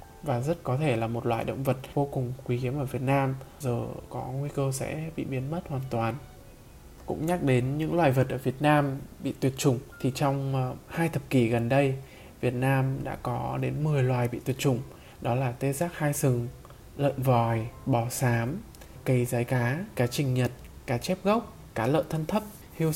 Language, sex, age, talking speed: Vietnamese, male, 20-39, 210 wpm